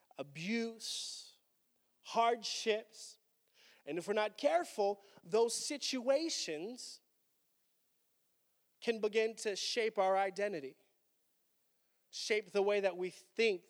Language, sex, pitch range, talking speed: English, male, 165-210 Hz, 90 wpm